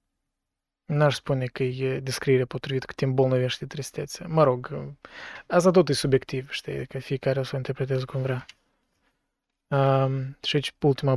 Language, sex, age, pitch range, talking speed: Romanian, male, 20-39, 135-160 Hz, 155 wpm